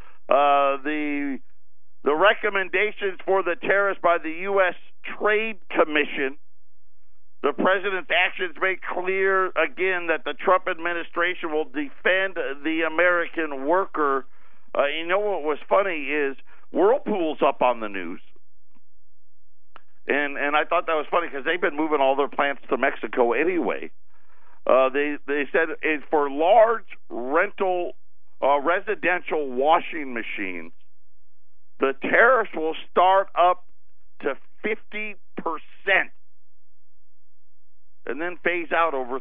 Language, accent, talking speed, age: English, American, 120 wpm, 50-69